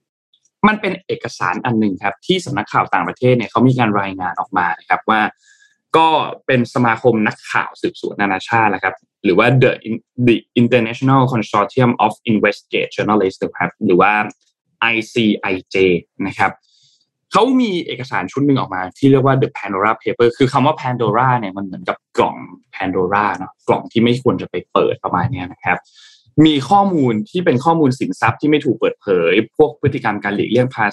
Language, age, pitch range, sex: Thai, 20-39, 105-135 Hz, male